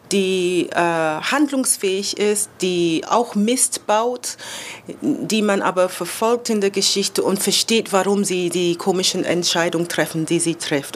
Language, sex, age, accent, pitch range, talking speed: German, female, 30-49, German, 170-215 Hz, 140 wpm